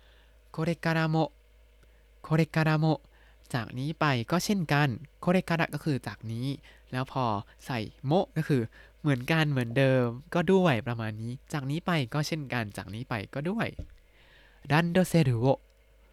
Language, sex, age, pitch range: Thai, male, 20-39, 115-155 Hz